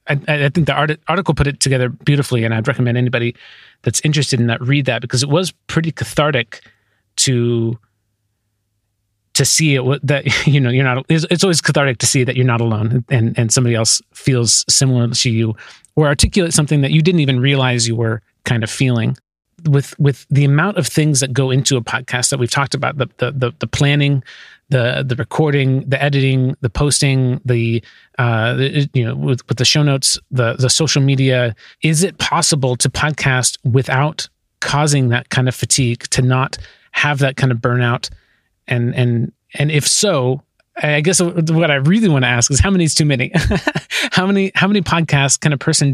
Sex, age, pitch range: male, 30-49, 120-145 Hz